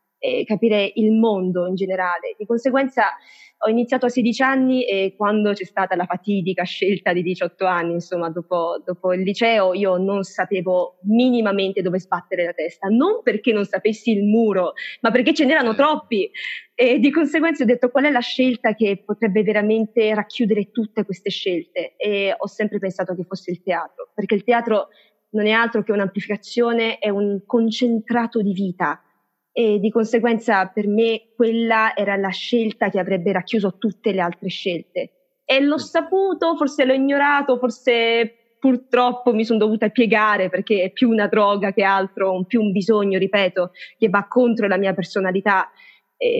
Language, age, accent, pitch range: Italian, 20-39, native, 195-245 Hz